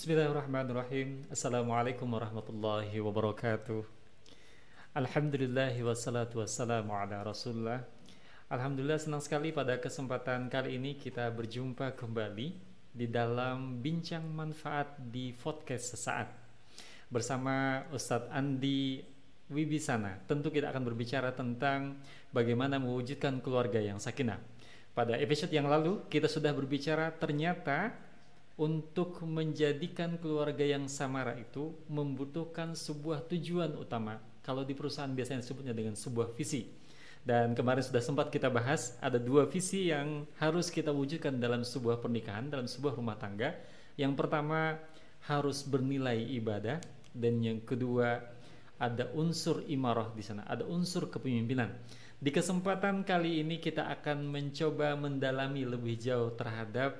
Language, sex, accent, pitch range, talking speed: Indonesian, male, native, 120-150 Hz, 120 wpm